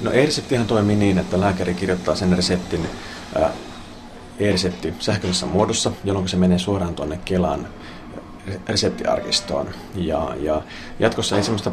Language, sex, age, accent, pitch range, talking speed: Finnish, male, 30-49, native, 90-100 Hz, 125 wpm